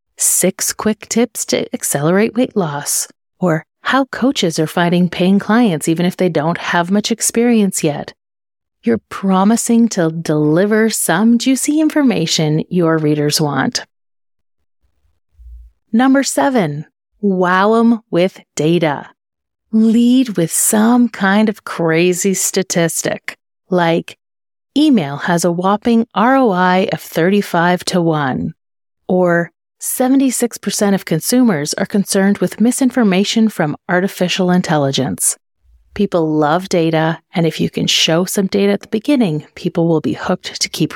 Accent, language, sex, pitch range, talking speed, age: American, English, female, 165-220 Hz, 125 wpm, 30-49